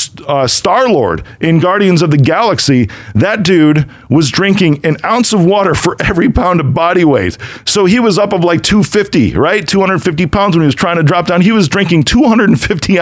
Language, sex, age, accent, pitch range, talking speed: English, male, 40-59, American, 125-180 Hz, 200 wpm